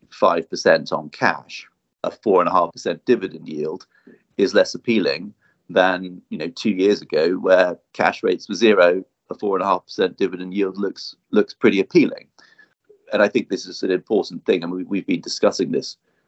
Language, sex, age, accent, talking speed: English, male, 30-49, British, 160 wpm